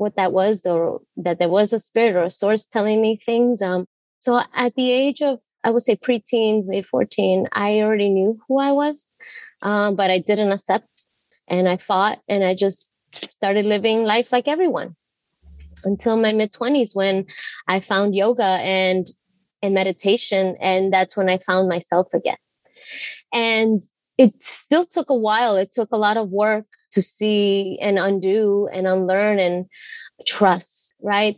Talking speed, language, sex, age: 170 wpm, English, female, 20-39